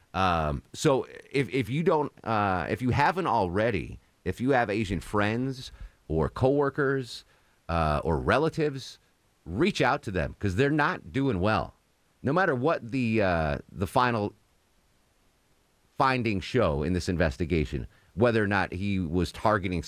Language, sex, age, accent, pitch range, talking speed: English, male, 30-49, American, 85-120 Hz, 145 wpm